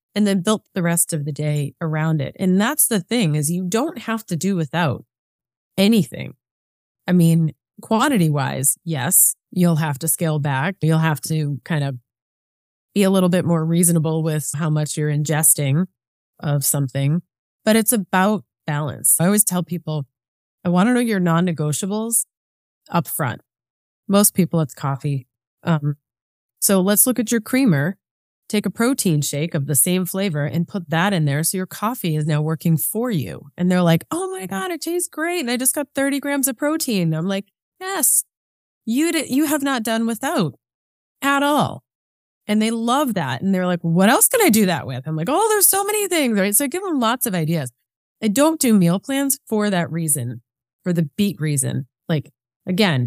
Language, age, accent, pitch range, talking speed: English, 20-39, American, 155-220 Hz, 190 wpm